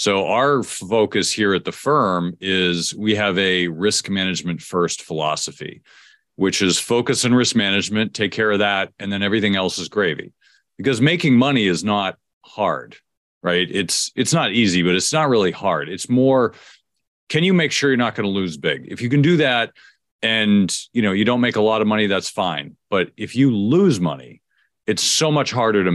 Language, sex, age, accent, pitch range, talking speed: English, male, 40-59, American, 85-115 Hz, 200 wpm